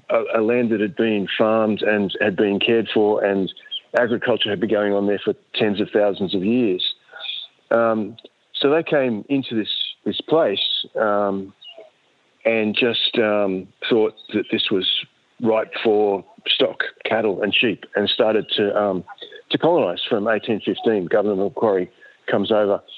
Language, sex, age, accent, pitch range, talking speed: English, male, 50-69, Australian, 105-135 Hz, 155 wpm